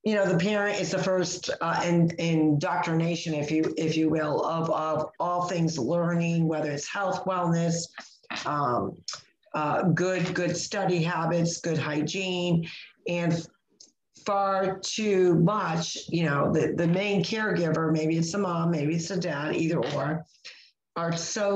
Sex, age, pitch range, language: female, 50-69, 165-195 Hz, English